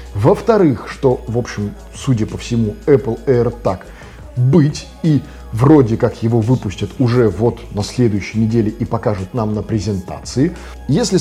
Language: Russian